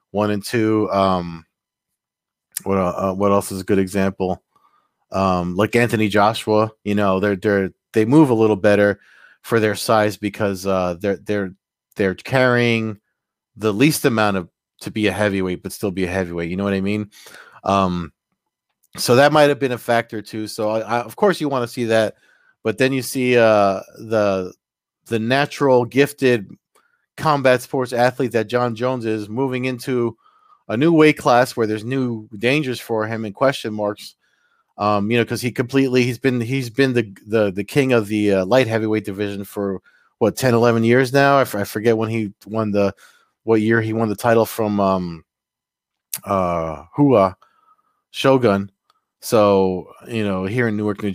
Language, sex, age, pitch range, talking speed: English, male, 30-49, 100-125 Hz, 180 wpm